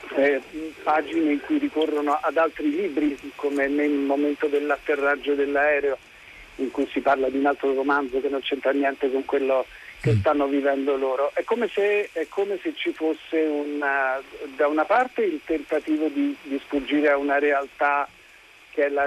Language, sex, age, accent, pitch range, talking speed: Italian, male, 50-69, native, 140-175 Hz, 170 wpm